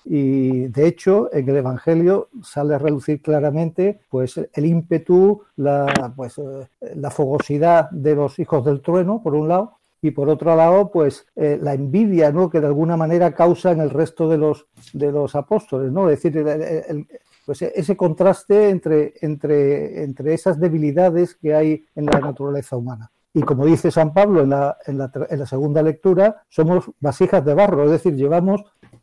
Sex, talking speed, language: male, 180 wpm, Spanish